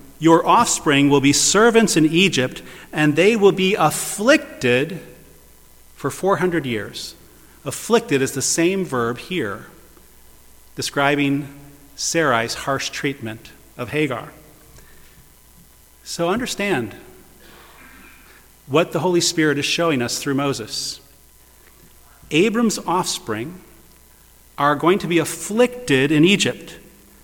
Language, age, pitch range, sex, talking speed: English, 40-59, 130-200 Hz, male, 105 wpm